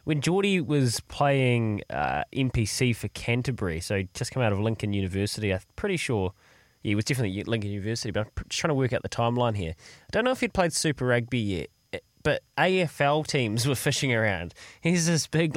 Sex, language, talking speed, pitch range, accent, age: male, English, 210 wpm, 105-135 Hz, Australian, 20-39